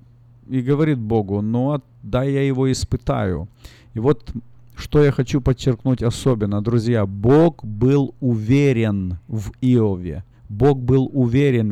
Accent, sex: native, male